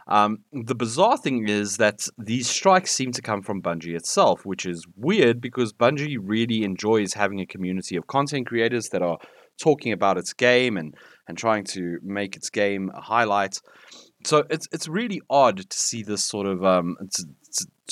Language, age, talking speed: English, 30-49, 180 wpm